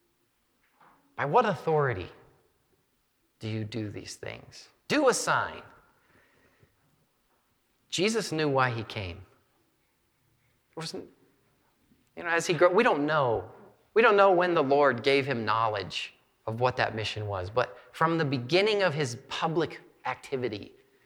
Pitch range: 115-170 Hz